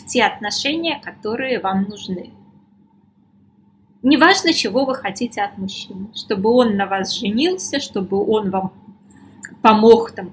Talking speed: 120 wpm